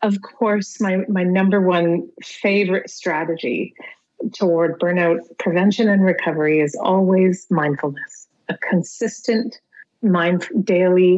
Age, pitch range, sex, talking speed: 30-49, 170-200 Hz, female, 105 wpm